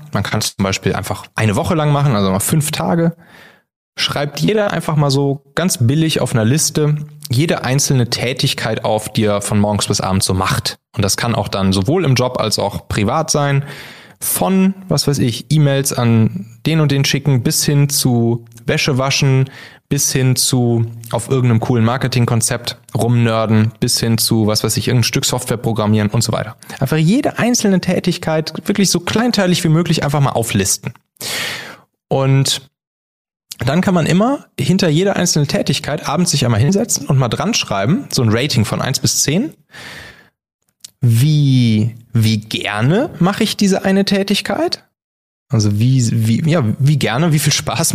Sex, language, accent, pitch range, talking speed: male, German, German, 115-160 Hz, 170 wpm